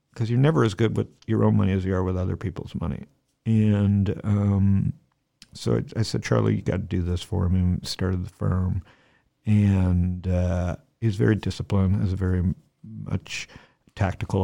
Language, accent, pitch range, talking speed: English, American, 95-110 Hz, 180 wpm